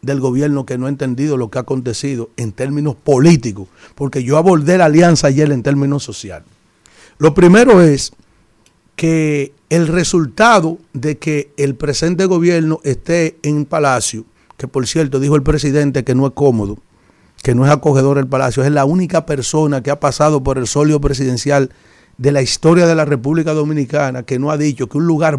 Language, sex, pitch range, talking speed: Spanish, male, 135-160 Hz, 180 wpm